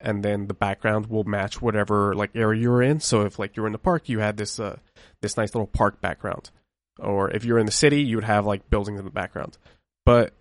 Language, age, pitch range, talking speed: English, 20-39, 100-120 Hz, 240 wpm